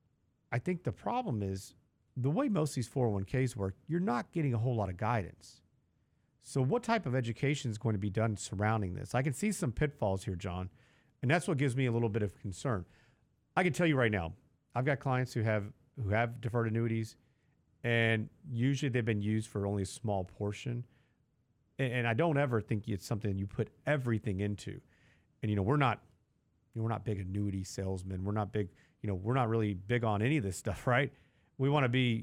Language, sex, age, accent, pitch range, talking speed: English, male, 40-59, American, 105-135 Hz, 210 wpm